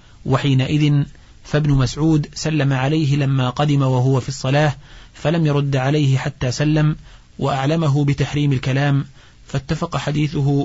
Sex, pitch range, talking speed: male, 130-150 Hz, 115 wpm